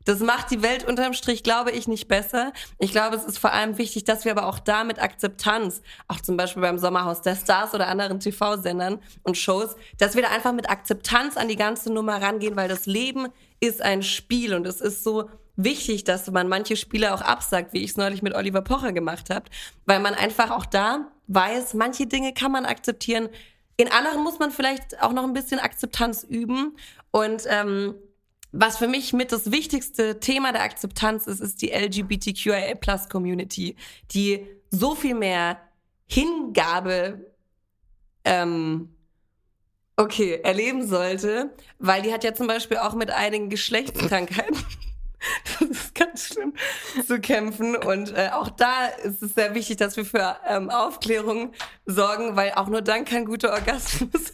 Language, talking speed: German, 170 wpm